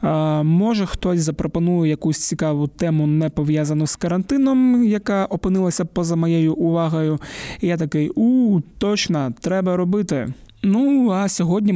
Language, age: Ukrainian, 20-39